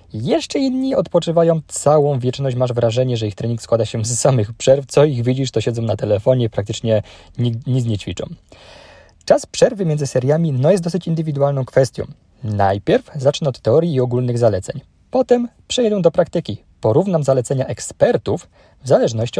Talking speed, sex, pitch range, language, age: 160 wpm, male, 115-155 Hz, Polish, 20-39